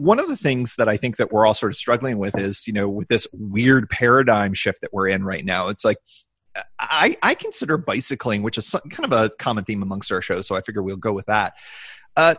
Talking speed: 245 wpm